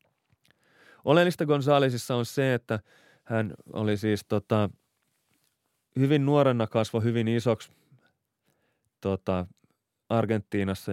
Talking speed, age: 90 wpm, 30-49